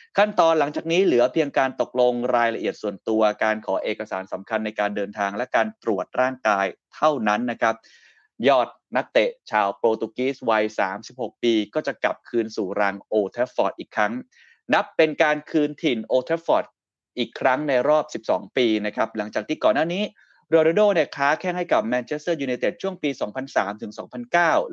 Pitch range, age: 115-155 Hz, 20-39